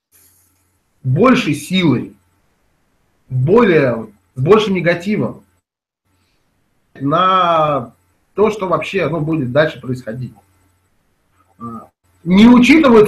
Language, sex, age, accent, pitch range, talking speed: Russian, male, 30-49, native, 130-210 Hz, 70 wpm